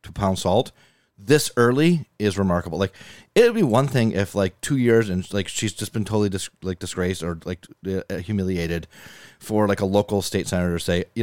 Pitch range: 90-120 Hz